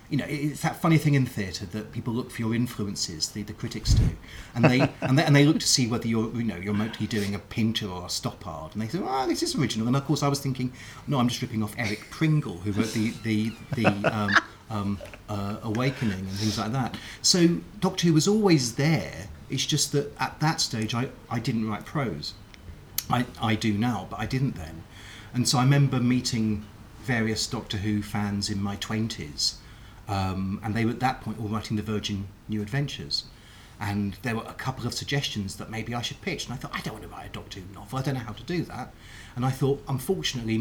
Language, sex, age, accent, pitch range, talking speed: English, male, 30-49, British, 105-130 Hz, 230 wpm